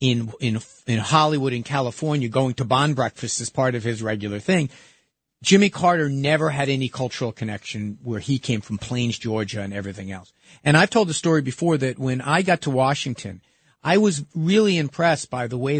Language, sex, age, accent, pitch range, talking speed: English, male, 50-69, American, 120-170 Hz, 195 wpm